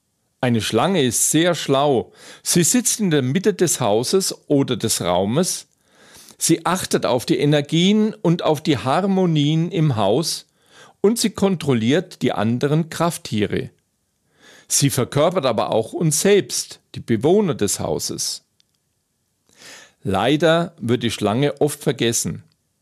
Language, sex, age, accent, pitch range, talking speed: German, male, 50-69, German, 125-175 Hz, 125 wpm